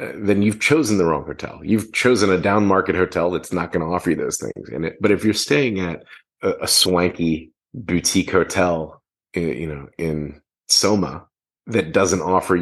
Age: 30-49